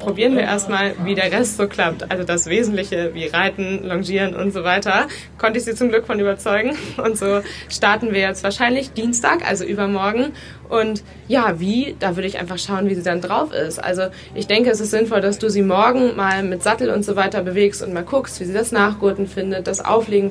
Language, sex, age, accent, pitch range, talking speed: German, female, 20-39, German, 180-205 Hz, 215 wpm